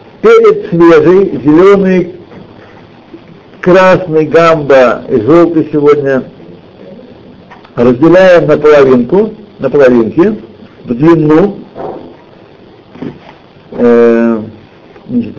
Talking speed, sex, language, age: 55 wpm, male, Russian, 60-79